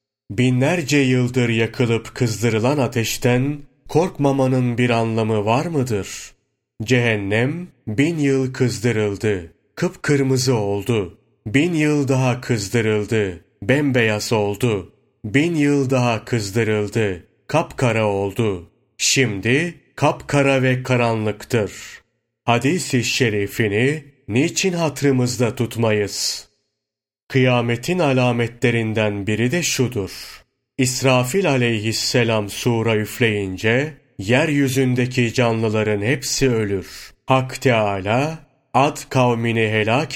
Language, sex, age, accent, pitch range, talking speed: Turkish, male, 30-49, native, 110-135 Hz, 80 wpm